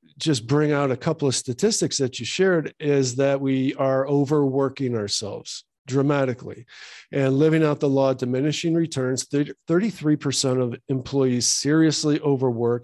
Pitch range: 120-150 Hz